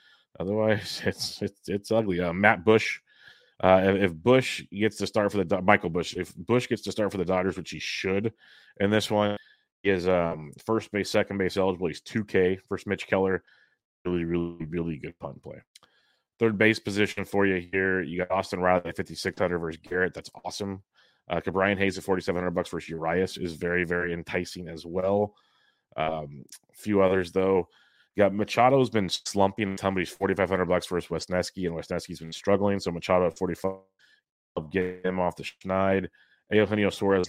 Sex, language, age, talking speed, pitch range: male, English, 30-49, 190 wpm, 90-100 Hz